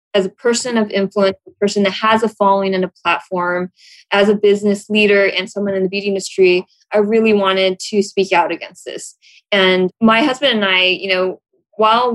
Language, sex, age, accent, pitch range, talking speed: English, female, 20-39, American, 185-210 Hz, 200 wpm